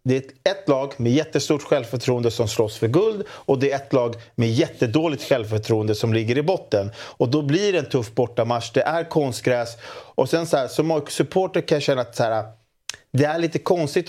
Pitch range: 120-150 Hz